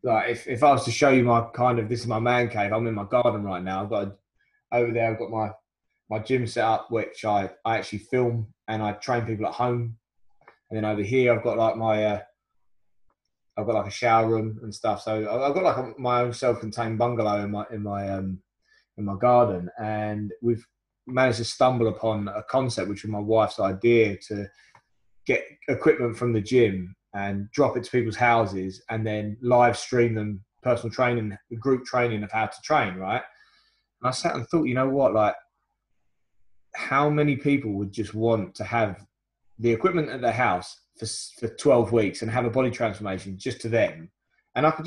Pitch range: 105-125 Hz